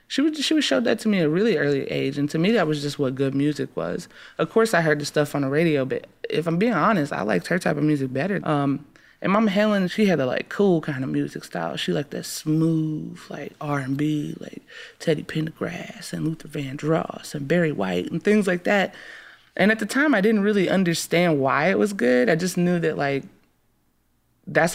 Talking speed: 230 wpm